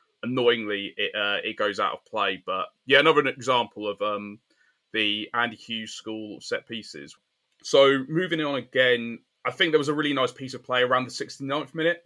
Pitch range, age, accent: 110-145 Hz, 20-39, British